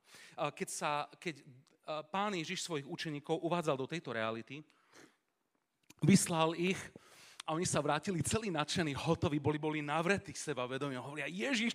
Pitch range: 125-190 Hz